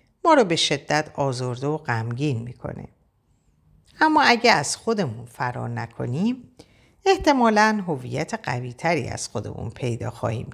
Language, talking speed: Persian, 120 wpm